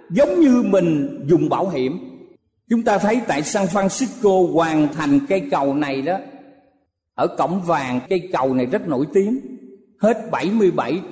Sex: male